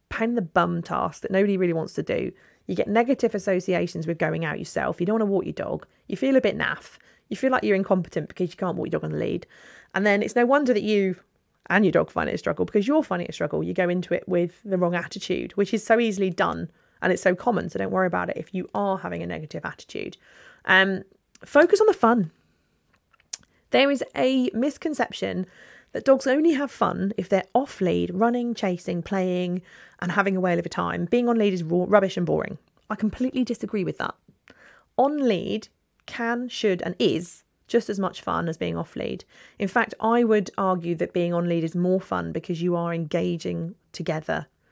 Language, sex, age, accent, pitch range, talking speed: English, female, 30-49, British, 175-235 Hz, 220 wpm